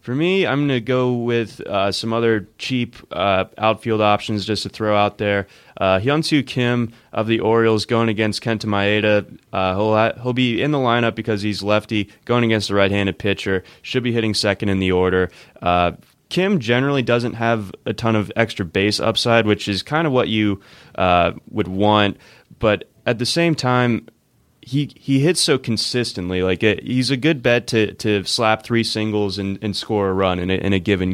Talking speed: 195 wpm